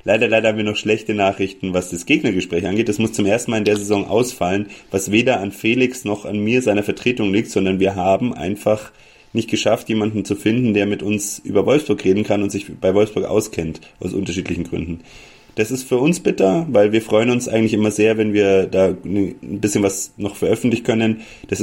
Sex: male